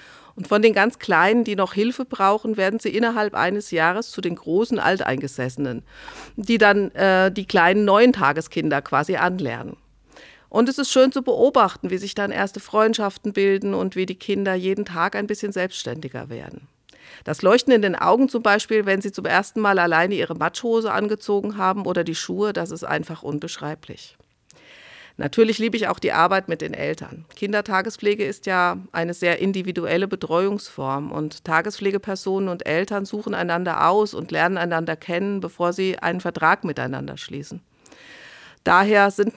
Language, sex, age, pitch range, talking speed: German, female, 50-69, 175-210 Hz, 165 wpm